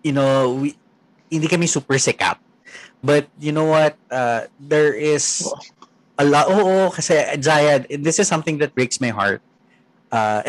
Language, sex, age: Filipino, male, 20-39